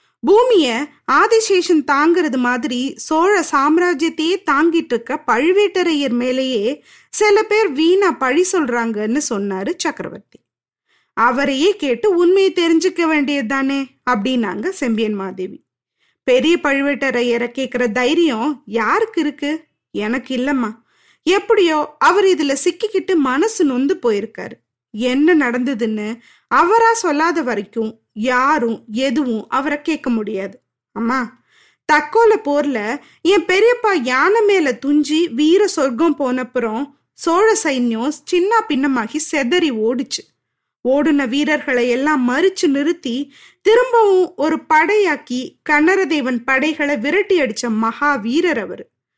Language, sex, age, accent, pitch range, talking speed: Tamil, female, 20-39, native, 255-350 Hz, 100 wpm